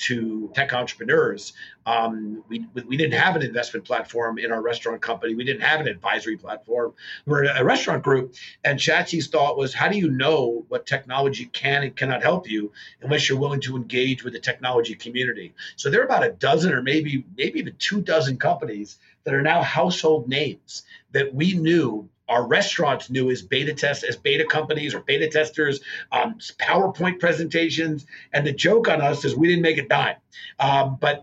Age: 50-69